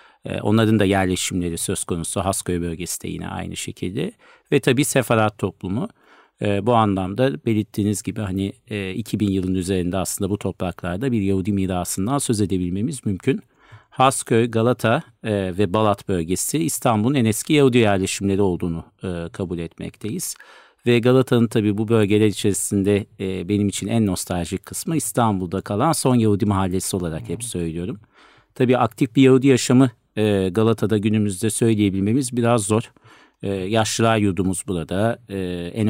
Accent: native